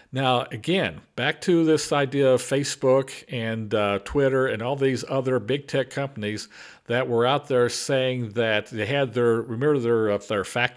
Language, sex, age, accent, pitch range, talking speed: English, male, 50-69, American, 125-165 Hz, 180 wpm